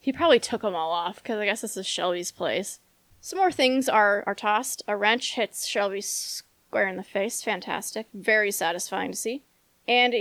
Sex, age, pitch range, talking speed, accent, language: female, 20-39, 205-255 Hz, 195 wpm, American, English